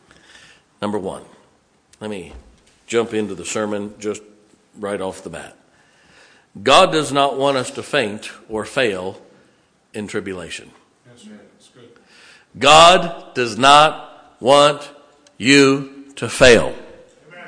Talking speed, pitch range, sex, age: 105 wpm, 125-165 Hz, male, 50-69